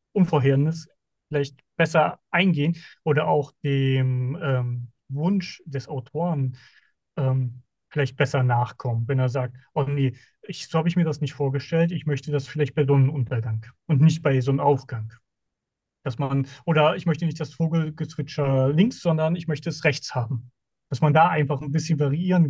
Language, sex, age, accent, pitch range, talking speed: German, male, 30-49, German, 130-160 Hz, 165 wpm